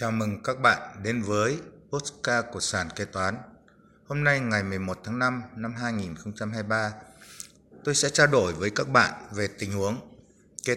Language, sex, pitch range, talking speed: Vietnamese, male, 105-130 Hz, 165 wpm